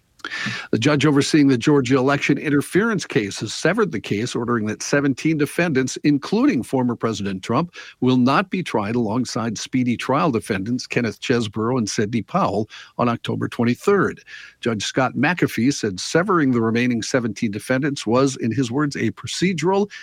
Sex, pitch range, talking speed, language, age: male, 110-145 Hz, 155 wpm, English, 50-69